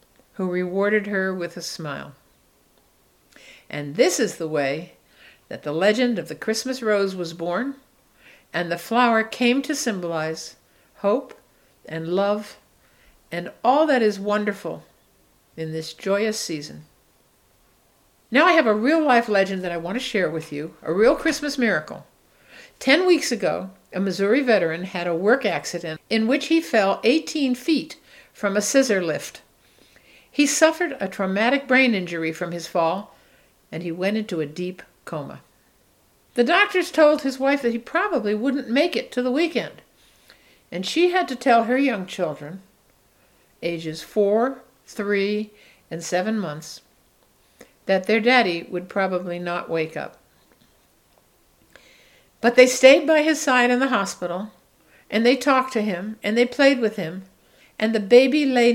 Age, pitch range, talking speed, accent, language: 60-79, 175-255 Hz, 150 wpm, American, English